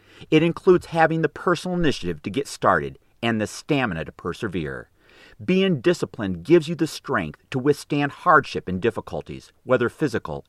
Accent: American